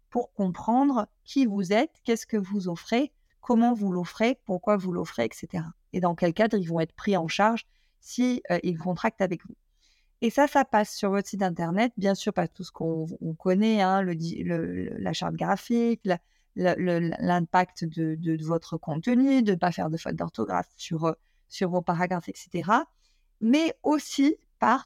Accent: French